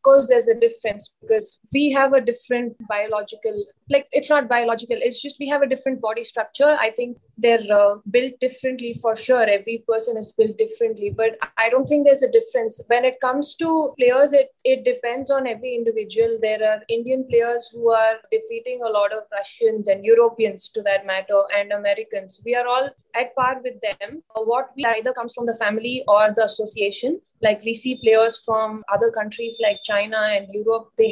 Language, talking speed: English, 195 wpm